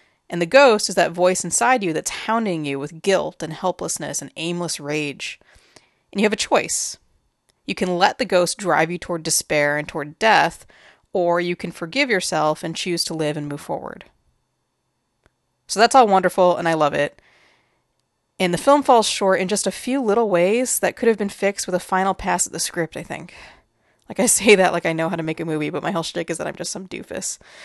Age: 30-49